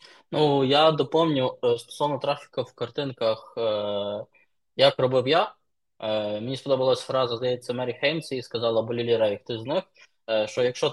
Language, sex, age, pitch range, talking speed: Ukrainian, male, 20-39, 115-150 Hz, 130 wpm